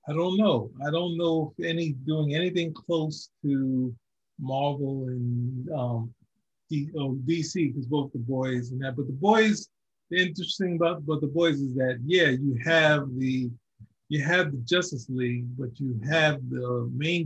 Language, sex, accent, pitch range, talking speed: English, male, American, 125-160 Hz, 170 wpm